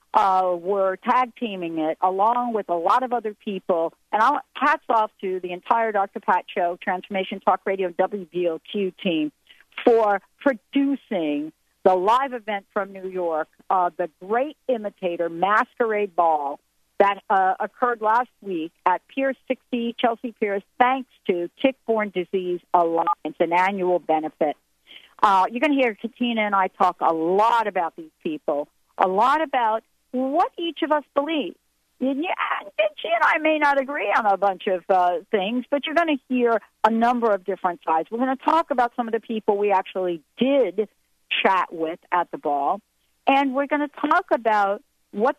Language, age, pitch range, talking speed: English, 50-69, 185-265 Hz, 170 wpm